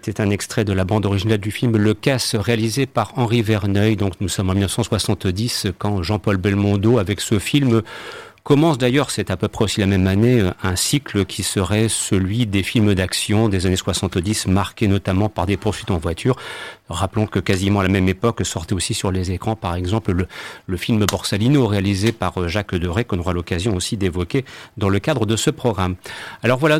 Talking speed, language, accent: 195 wpm, French, French